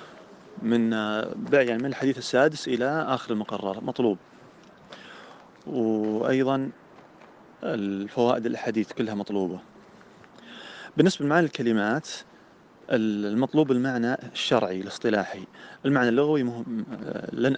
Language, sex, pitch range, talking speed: Arabic, male, 105-135 Hz, 90 wpm